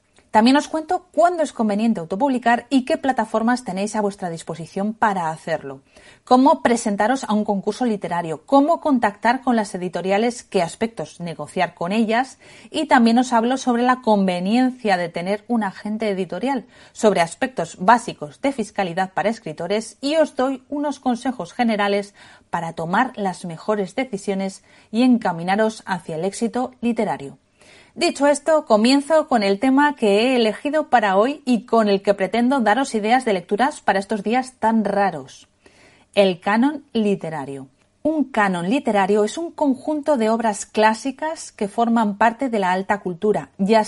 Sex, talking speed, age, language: female, 155 wpm, 30-49, Spanish